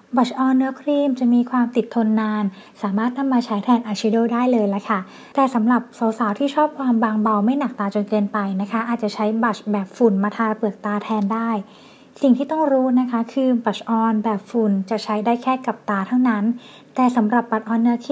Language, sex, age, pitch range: Thai, female, 20-39, 215-250 Hz